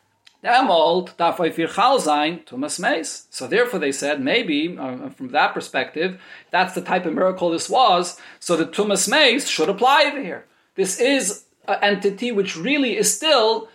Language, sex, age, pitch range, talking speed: English, male, 40-59, 175-225 Hz, 135 wpm